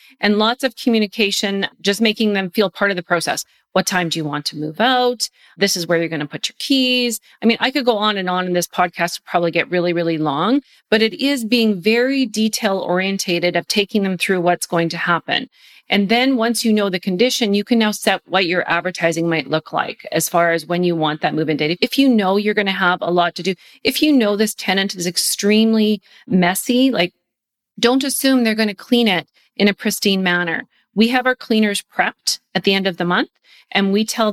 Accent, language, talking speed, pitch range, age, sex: American, English, 230 wpm, 175-225 Hz, 30-49, female